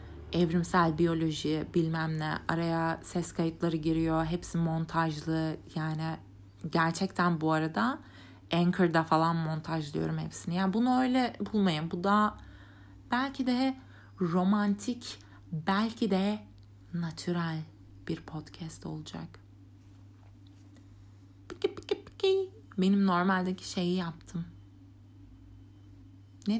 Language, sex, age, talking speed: Turkish, female, 30-49, 85 wpm